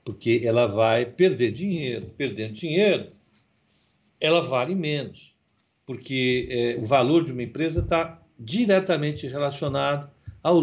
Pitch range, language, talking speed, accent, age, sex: 120-165 Hz, Portuguese, 115 wpm, Brazilian, 60-79, male